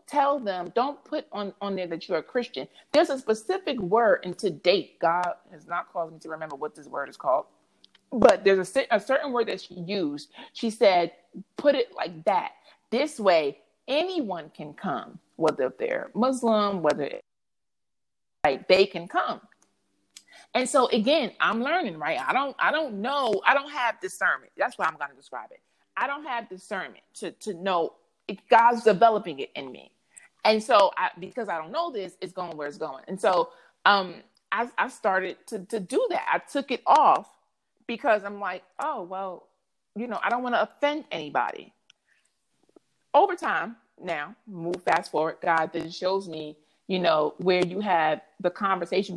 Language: English